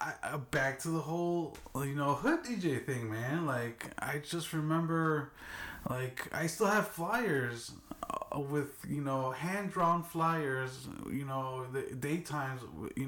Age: 20-39